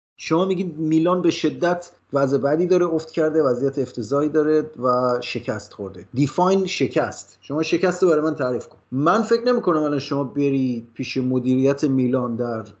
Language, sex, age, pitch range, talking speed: Persian, male, 30-49, 140-180 Hz, 175 wpm